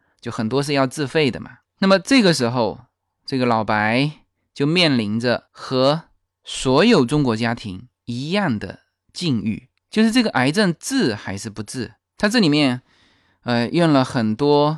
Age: 20-39